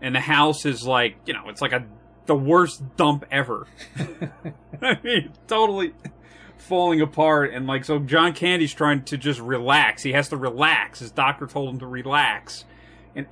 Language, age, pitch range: English, 30-49, 130-165 Hz